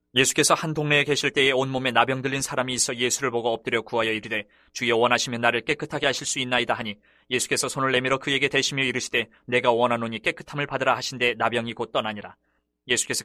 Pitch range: 120-140 Hz